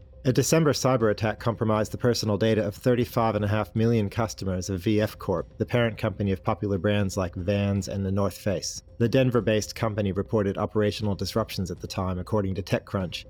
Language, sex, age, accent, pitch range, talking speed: English, male, 30-49, American, 100-115 Hz, 175 wpm